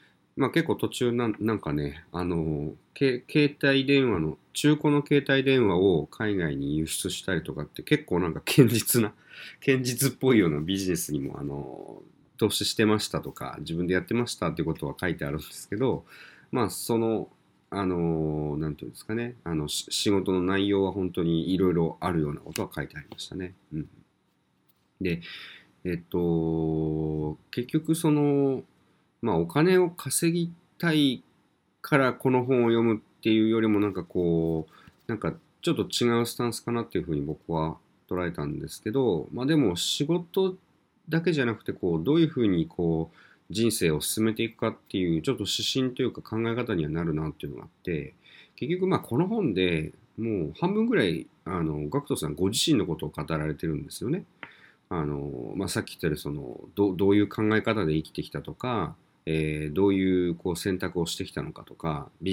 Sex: male